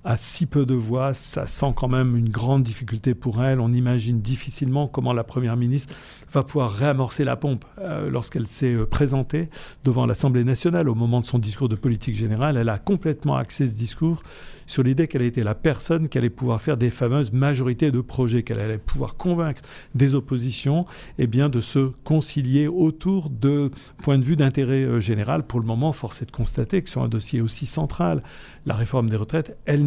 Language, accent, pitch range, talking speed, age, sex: French, French, 120-145 Hz, 195 wpm, 50-69, male